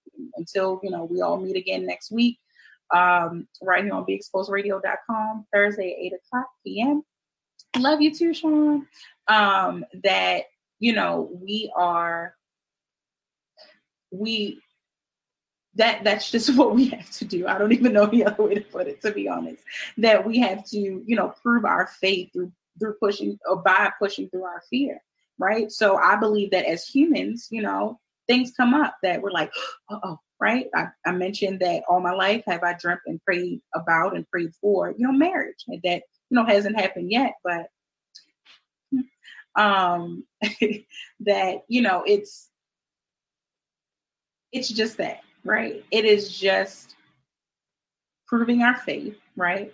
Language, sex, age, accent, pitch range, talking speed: English, female, 20-39, American, 185-240 Hz, 155 wpm